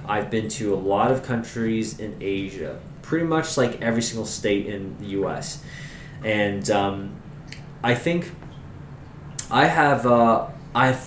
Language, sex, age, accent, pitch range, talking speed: English, male, 20-39, American, 110-150 Hz, 135 wpm